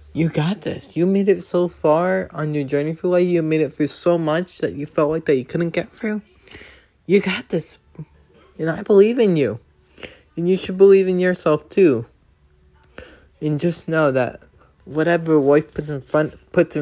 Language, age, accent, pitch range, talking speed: English, 20-39, American, 125-170 Hz, 185 wpm